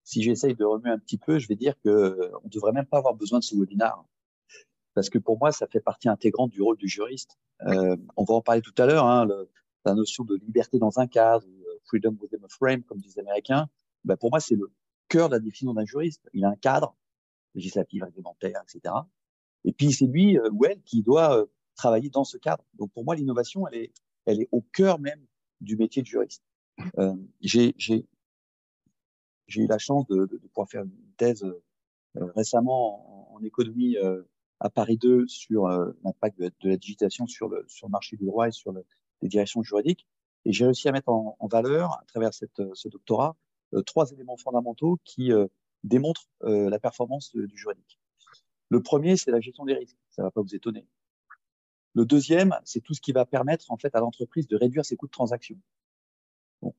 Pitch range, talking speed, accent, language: 105-135 Hz, 215 wpm, French, French